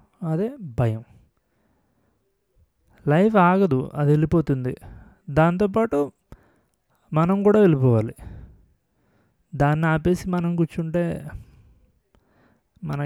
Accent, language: native, Telugu